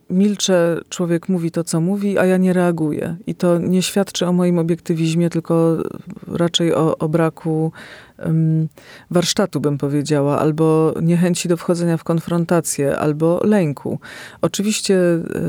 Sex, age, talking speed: female, 40-59, 130 wpm